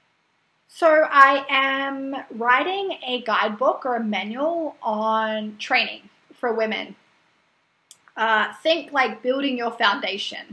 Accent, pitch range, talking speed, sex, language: Australian, 215-260 Hz, 110 wpm, female, English